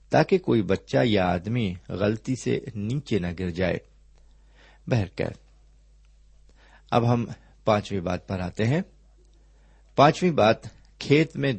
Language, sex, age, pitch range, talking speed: Urdu, male, 50-69, 90-130 Hz, 105 wpm